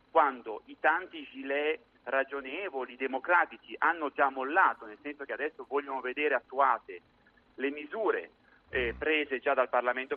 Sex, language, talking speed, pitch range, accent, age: male, Italian, 135 wpm, 125-150 Hz, native, 40-59